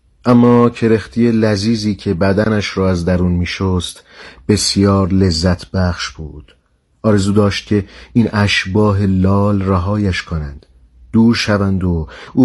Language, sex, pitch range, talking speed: Persian, male, 80-110 Hz, 120 wpm